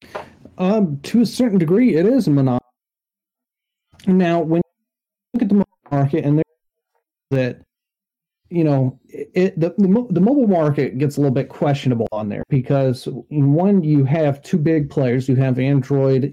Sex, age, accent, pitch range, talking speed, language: male, 40-59, American, 125-155 Hz, 160 wpm, English